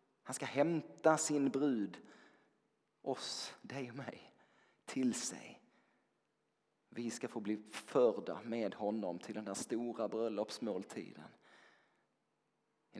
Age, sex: 30-49, male